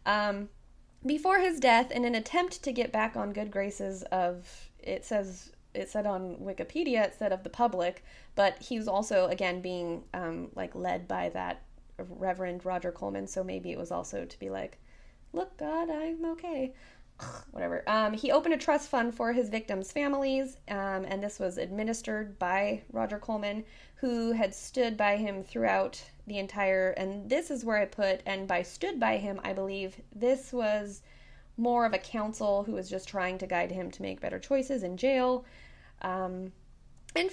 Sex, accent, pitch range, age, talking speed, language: female, American, 185-255 Hz, 20-39, 180 wpm, English